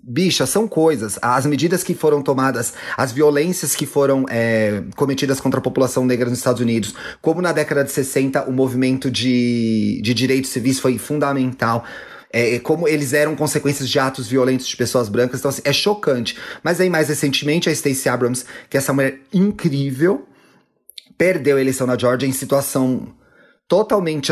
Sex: male